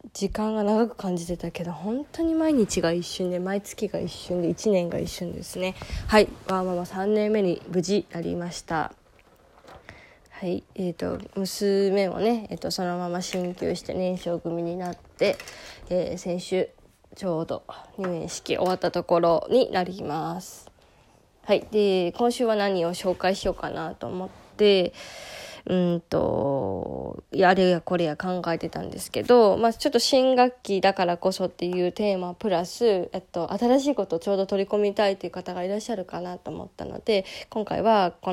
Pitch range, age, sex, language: 175-210 Hz, 20-39, female, Japanese